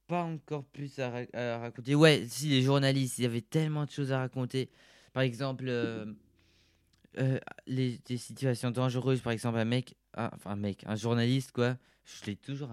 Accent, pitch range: French, 110-130 Hz